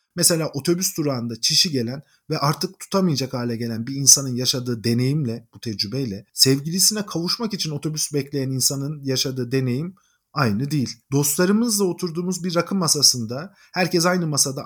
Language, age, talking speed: Turkish, 50-69, 140 wpm